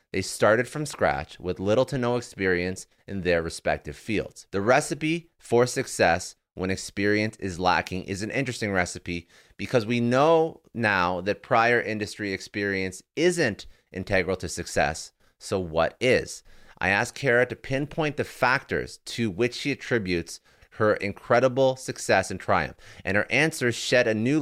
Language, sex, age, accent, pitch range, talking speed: English, male, 30-49, American, 95-120 Hz, 150 wpm